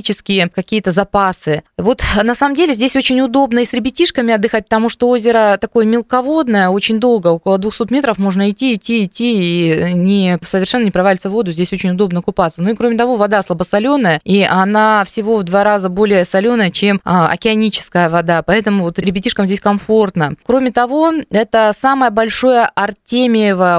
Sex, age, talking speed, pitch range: female, 20-39, 160 wpm, 190-230 Hz